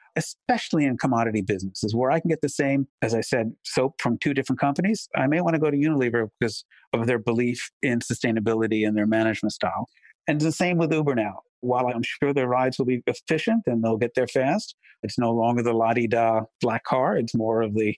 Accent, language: American, English